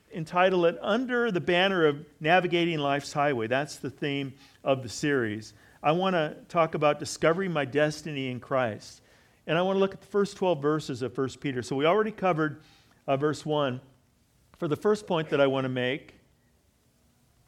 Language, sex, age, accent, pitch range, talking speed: English, male, 50-69, American, 135-175 Hz, 185 wpm